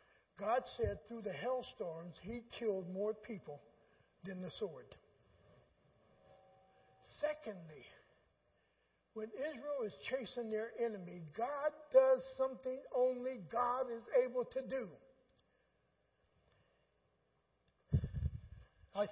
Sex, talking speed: male, 95 wpm